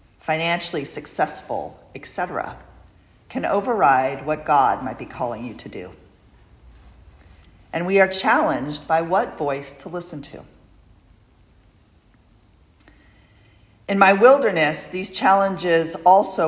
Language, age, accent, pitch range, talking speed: English, 40-59, American, 110-170 Hz, 110 wpm